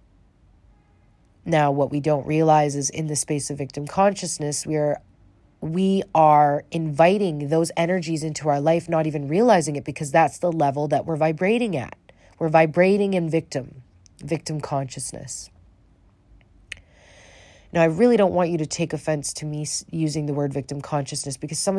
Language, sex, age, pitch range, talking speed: English, female, 30-49, 135-165 Hz, 160 wpm